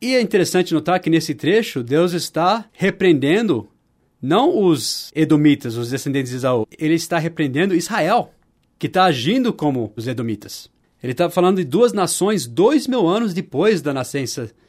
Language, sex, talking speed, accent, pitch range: Portuguese, male, 160 wpm, Brazilian, 130-175 Hz